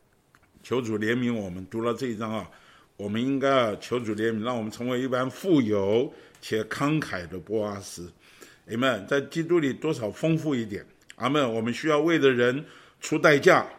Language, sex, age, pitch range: Chinese, male, 50-69, 115-170 Hz